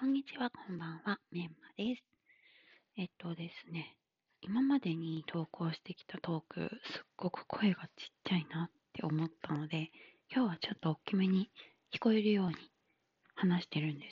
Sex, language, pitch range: female, Japanese, 165-215 Hz